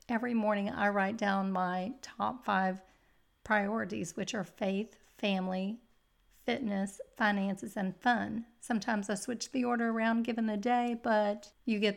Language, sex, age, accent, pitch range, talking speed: English, female, 40-59, American, 195-230 Hz, 145 wpm